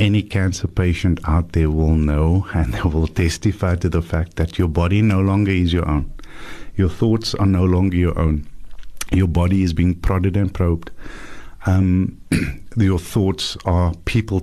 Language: English